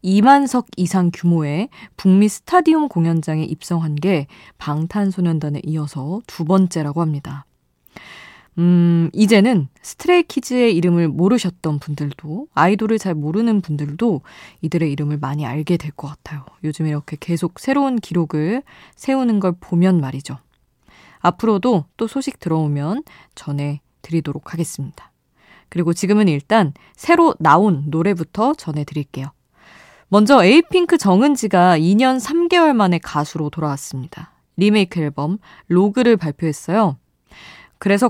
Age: 20-39